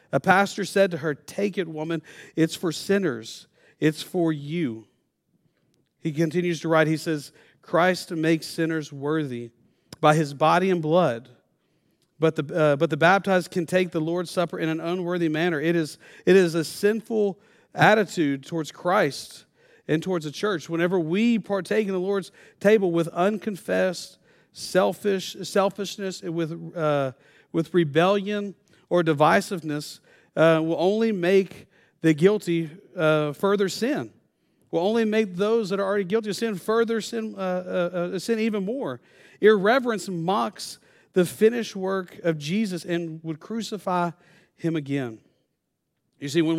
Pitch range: 160-195 Hz